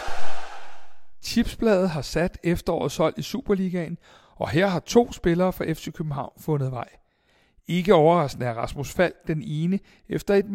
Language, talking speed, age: Danish, 140 wpm, 60-79